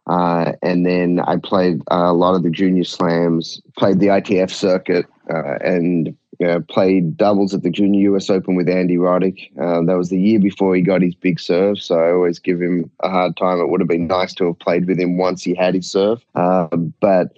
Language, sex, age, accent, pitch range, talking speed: English, male, 20-39, Australian, 85-95 Hz, 230 wpm